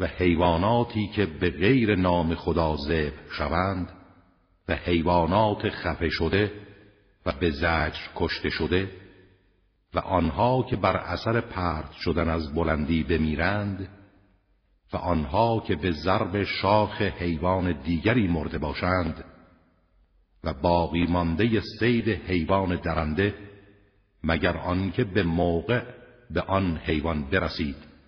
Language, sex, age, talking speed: Persian, male, 50-69, 115 wpm